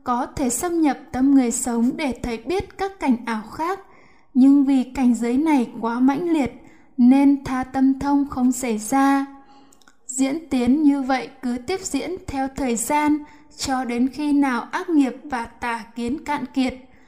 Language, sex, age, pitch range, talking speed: Vietnamese, female, 10-29, 245-285 Hz, 175 wpm